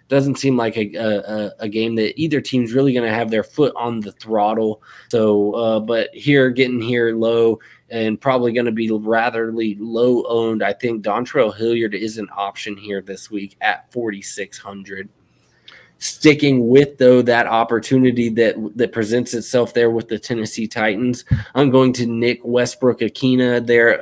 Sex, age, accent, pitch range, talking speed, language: male, 20-39, American, 110-125 Hz, 165 wpm, English